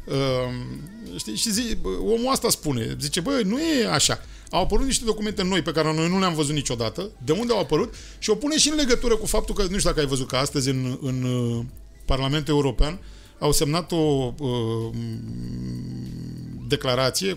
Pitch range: 135-200 Hz